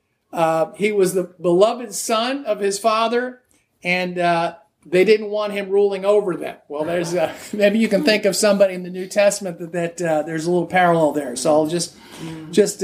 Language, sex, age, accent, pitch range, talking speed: English, male, 50-69, American, 165-215 Hz, 200 wpm